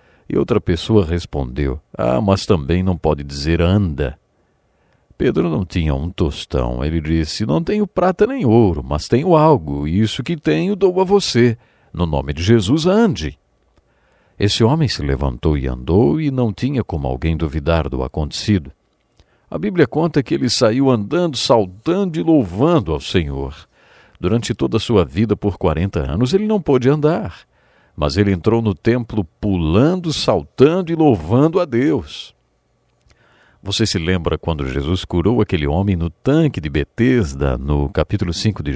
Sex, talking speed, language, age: male, 160 wpm, English, 50-69